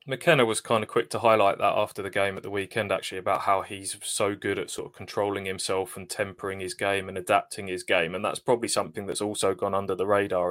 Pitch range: 100-115 Hz